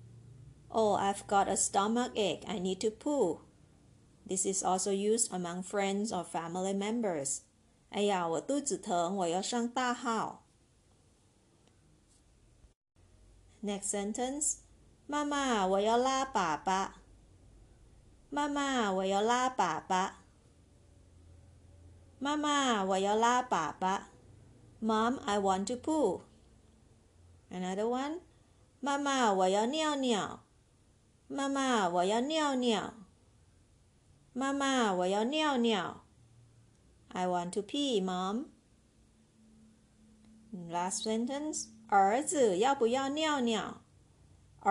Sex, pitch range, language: female, 170-245 Hz, Chinese